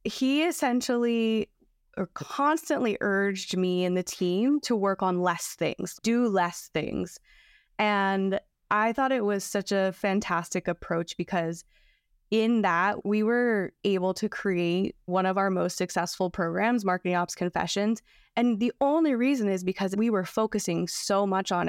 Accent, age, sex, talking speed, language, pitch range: American, 20-39, female, 150 wpm, English, 180-215 Hz